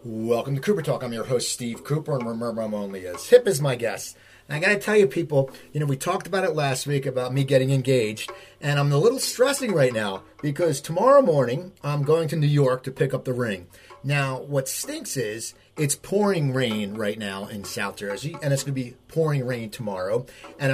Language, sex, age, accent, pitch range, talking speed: English, male, 30-49, American, 125-160 Hz, 225 wpm